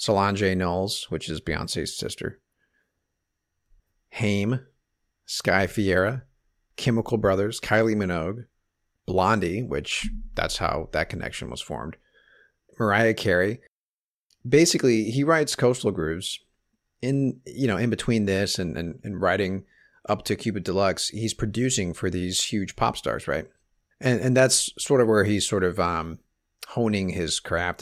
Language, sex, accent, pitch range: English, male, American, 95-125 Hz